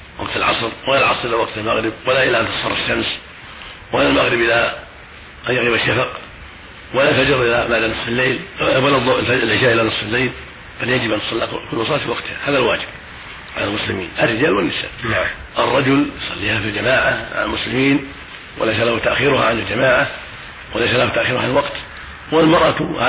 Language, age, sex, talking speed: Arabic, 50-69, male, 160 wpm